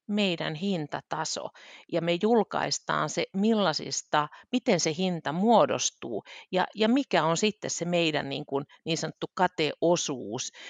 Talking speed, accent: 130 wpm, native